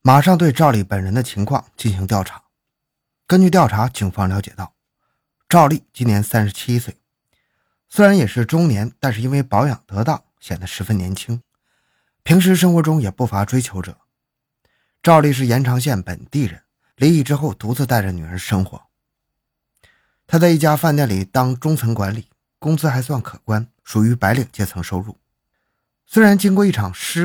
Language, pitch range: Chinese, 100-150 Hz